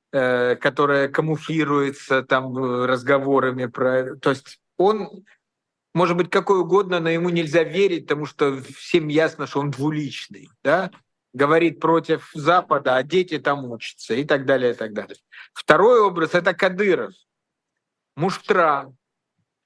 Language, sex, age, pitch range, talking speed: Russian, male, 50-69, 140-170 Hz, 125 wpm